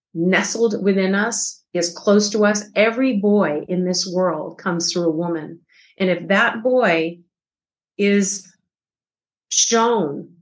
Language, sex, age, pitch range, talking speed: English, female, 40-59, 185-225 Hz, 125 wpm